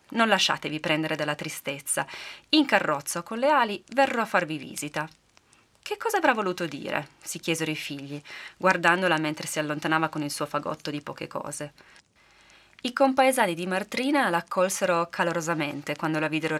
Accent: native